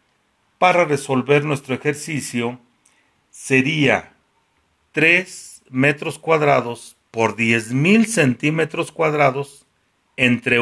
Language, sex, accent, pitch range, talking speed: Spanish, male, Mexican, 105-155 Hz, 75 wpm